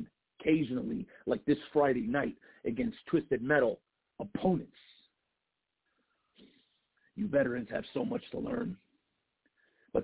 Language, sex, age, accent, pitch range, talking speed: English, male, 50-69, American, 135-185 Hz, 100 wpm